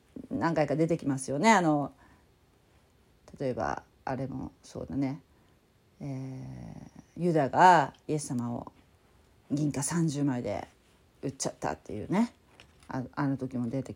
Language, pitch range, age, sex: Japanese, 150-210 Hz, 40-59, female